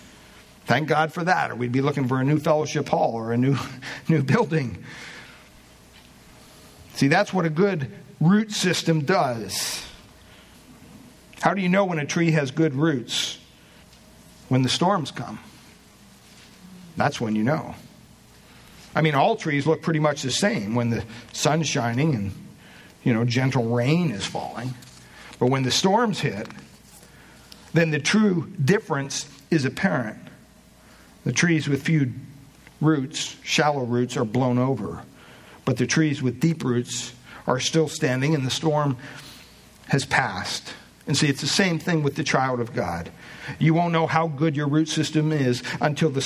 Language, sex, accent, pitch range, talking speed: English, male, American, 125-160 Hz, 155 wpm